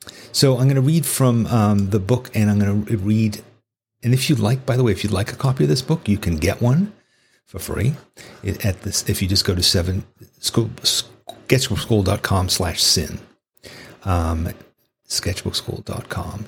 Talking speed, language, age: 170 wpm, English, 40-59